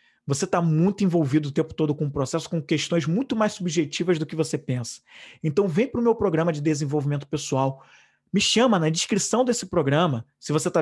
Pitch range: 150-195 Hz